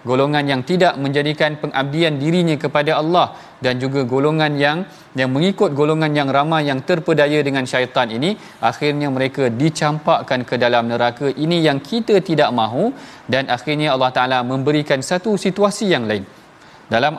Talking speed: 150 wpm